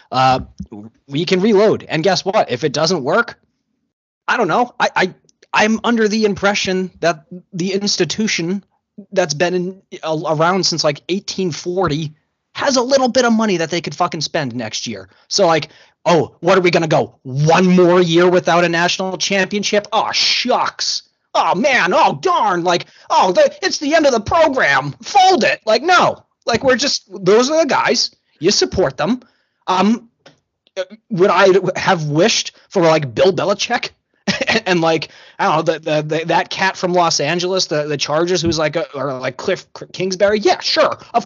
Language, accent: English, American